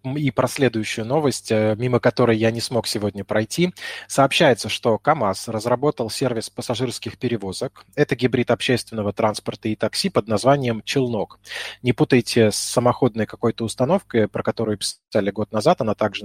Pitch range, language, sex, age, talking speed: 110-130 Hz, Russian, male, 20-39, 150 wpm